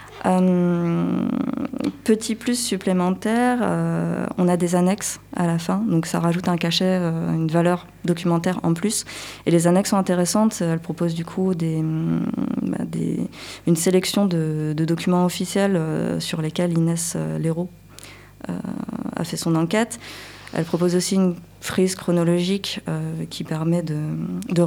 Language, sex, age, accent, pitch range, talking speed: French, female, 20-39, French, 160-190 Hz, 155 wpm